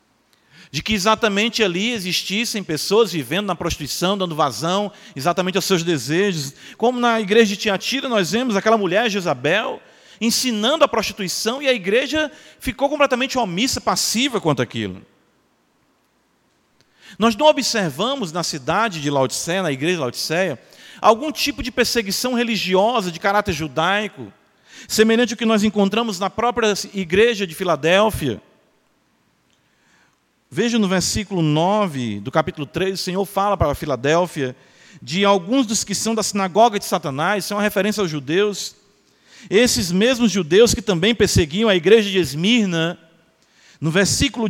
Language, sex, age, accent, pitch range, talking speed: Portuguese, male, 40-59, Brazilian, 170-225 Hz, 145 wpm